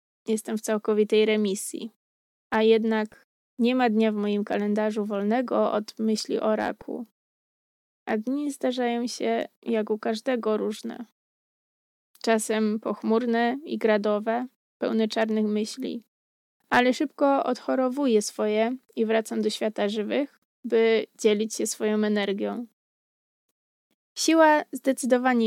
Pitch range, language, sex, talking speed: 215-245 Hz, Polish, female, 115 wpm